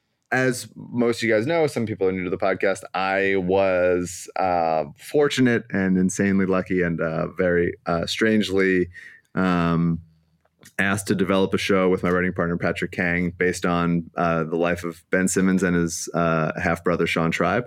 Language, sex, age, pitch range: English, male, 20-39, 85-100 Hz